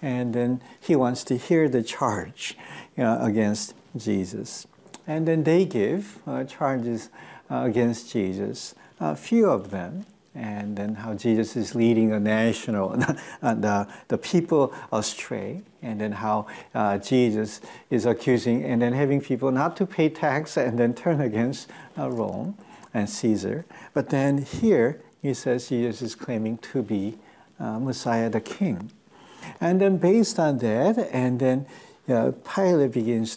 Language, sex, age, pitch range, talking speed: English, male, 60-79, 110-155 Hz, 155 wpm